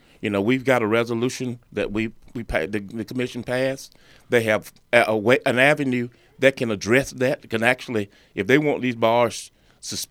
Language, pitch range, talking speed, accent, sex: English, 115-155 Hz, 180 wpm, American, male